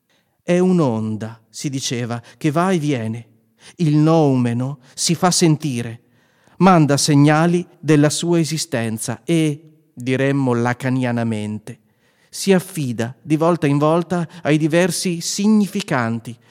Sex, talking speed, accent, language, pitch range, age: male, 110 wpm, native, Italian, 125-170 Hz, 40-59